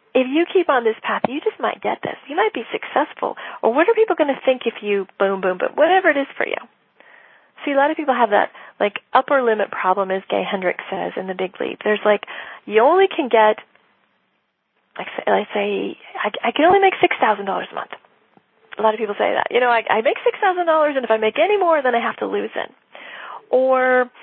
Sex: female